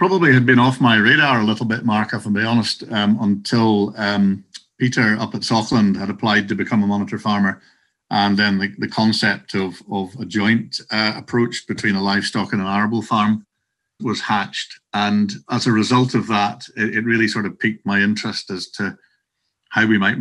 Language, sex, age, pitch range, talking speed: English, male, 50-69, 100-115 Hz, 200 wpm